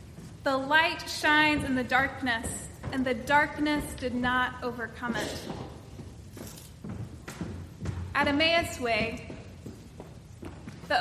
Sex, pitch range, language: female, 250-305 Hz, English